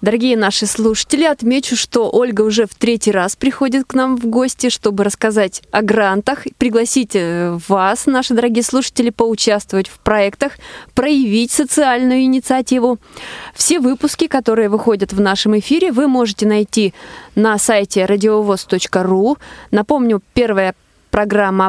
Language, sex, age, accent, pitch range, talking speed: Russian, female, 20-39, native, 205-255 Hz, 125 wpm